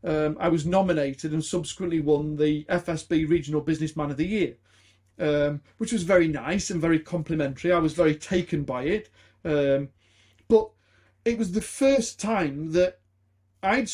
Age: 40-59